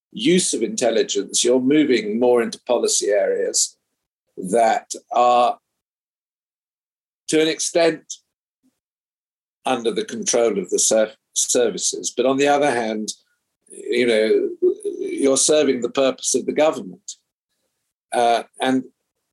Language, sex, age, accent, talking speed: English, male, 50-69, British, 110 wpm